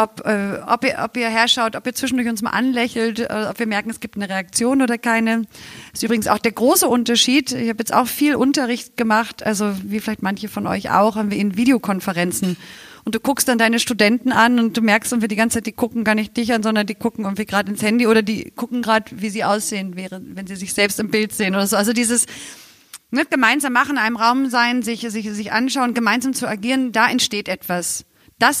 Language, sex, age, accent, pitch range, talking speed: German, female, 40-59, German, 200-240 Hz, 230 wpm